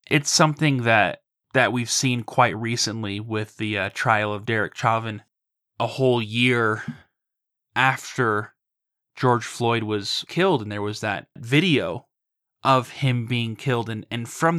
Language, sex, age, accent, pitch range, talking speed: English, male, 10-29, American, 110-135 Hz, 145 wpm